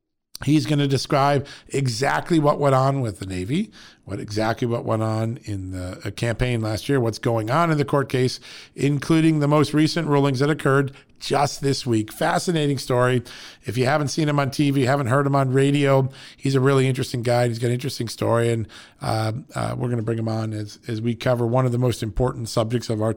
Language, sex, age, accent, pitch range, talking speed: English, male, 50-69, American, 115-145 Hz, 215 wpm